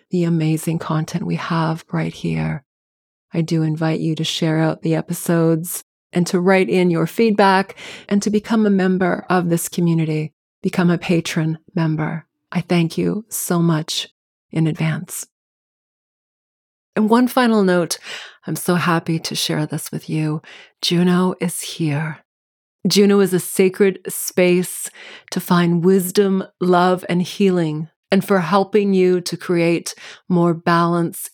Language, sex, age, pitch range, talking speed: English, female, 30-49, 160-190 Hz, 145 wpm